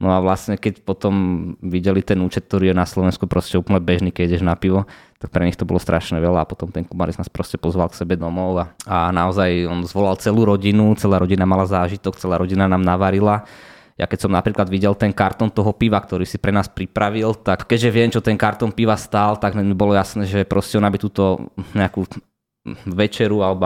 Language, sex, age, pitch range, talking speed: Slovak, male, 20-39, 90-105 Hz, 215 wpm